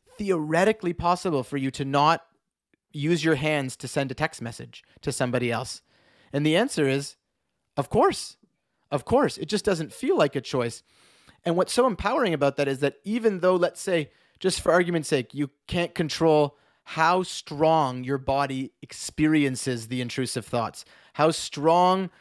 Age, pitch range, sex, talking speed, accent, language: 30-49, 130-165 Hz, male, 165 wpm, American, English